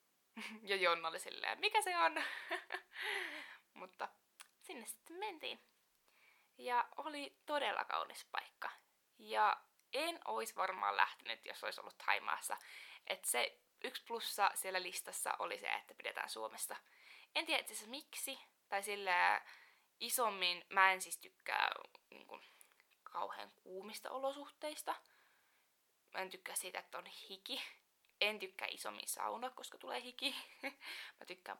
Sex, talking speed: female, 135 wpm